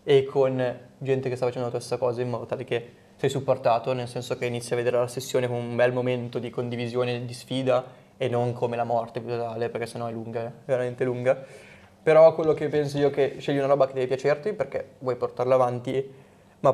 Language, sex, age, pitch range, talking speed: Italian, male, 20-39, 125-135 Hz, 215 wpm